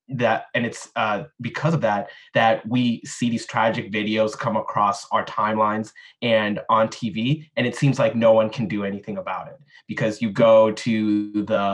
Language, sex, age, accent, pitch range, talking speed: English, male, 20-39, American, 105-135 Hz, 185 wpm